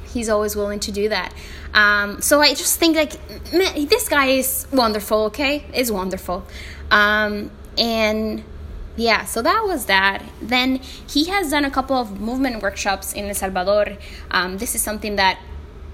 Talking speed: 160 wpm